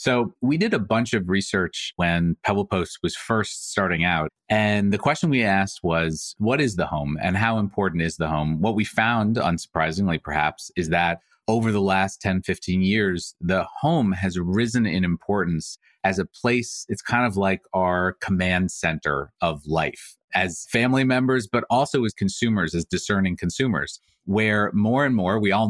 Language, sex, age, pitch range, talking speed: English, male, 30-49, 90-115 Hz, 180 wpm